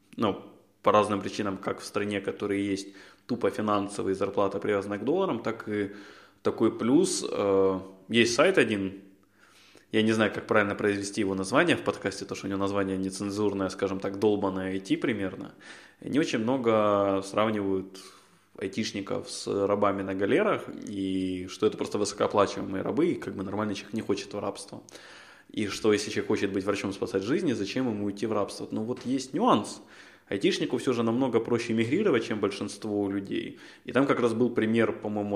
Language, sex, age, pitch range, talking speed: Ukrainian, male, 20-39, 100-110 Hz, 170 wpm